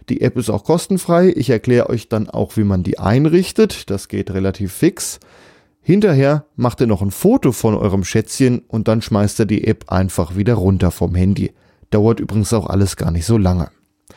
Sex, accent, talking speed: male, German, 195 wpm